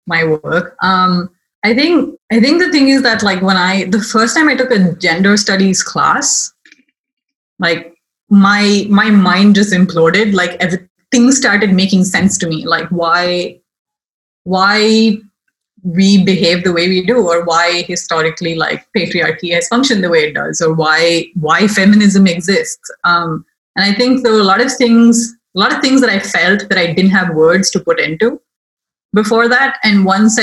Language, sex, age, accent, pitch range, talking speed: English, female, 20-39, Indian, 175-220 Hz, 180 wpm